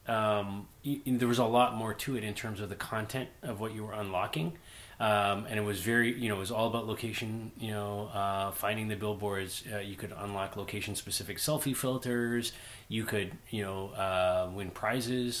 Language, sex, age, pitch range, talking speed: English, male, 30-49, 100-120 Hz, 195 wpm